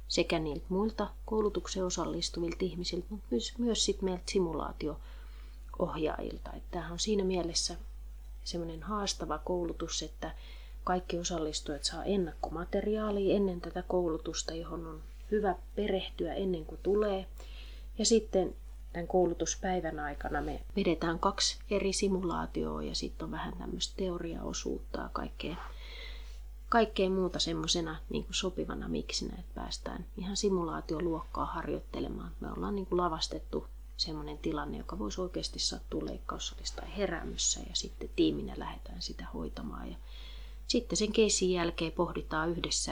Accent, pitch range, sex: native, 155-195 Hz, female